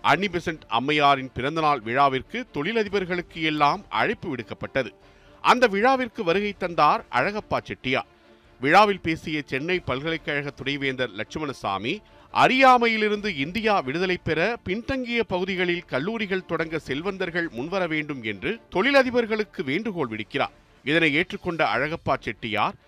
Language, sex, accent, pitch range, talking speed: Tamil, male, native, 145-200 Hz, 100 wpm